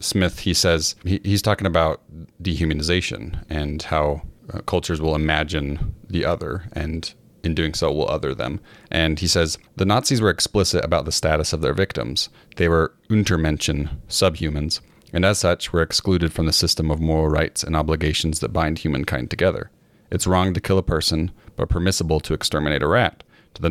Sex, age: male, 30-49